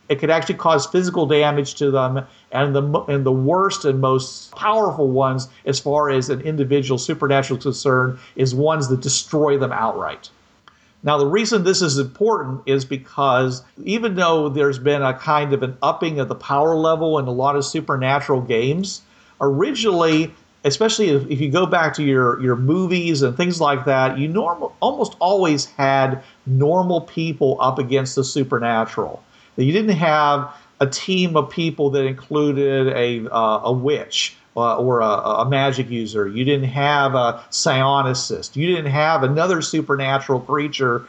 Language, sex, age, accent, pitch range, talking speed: English, male, 50-69, American, 135-160 Hz, 165 wpm